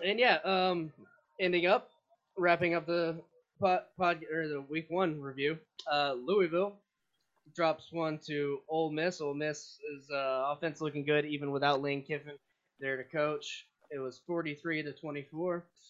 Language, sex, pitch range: English, male, 135-175 Hz